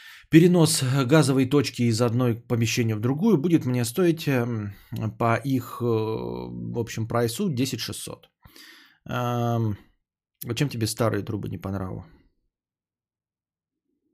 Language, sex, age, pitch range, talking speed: Bulgarian, male, 20-39, 105-130 Hz, 100 wpm